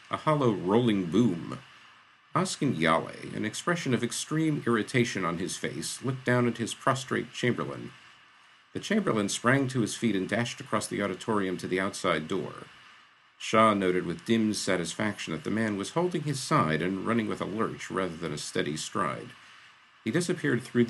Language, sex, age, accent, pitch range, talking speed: English, male, 50-69, American, 95-125 Hz, 170 wpm